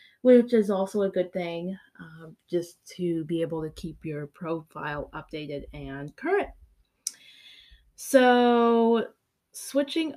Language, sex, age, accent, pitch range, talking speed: English, female, 20-39, American, 175-220 Hz, 120 wpm